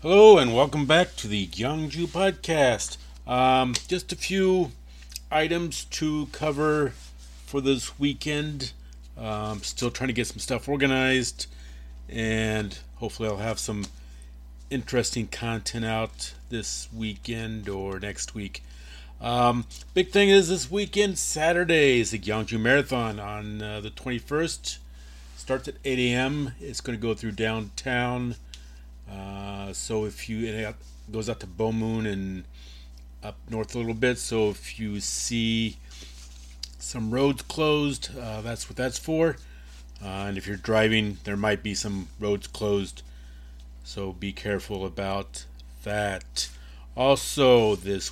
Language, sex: English, male